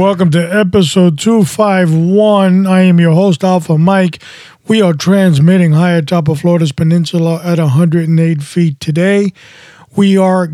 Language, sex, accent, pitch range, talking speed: English, male, American, 155-185 Hz, 135 wpm